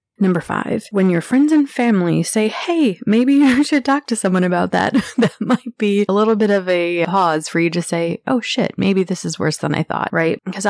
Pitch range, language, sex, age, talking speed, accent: 160-200 Hz, English, female, 20-39, 230 wpm, American